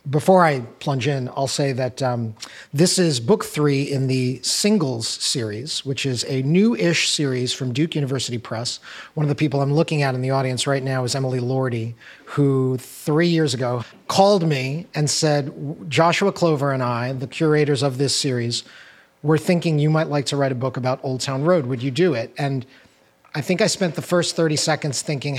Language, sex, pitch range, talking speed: English, male, 130-155 Hz, 200 wpm